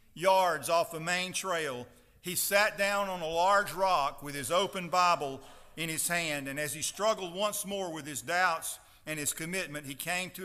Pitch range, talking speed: 160-205 Hz, 195 wpm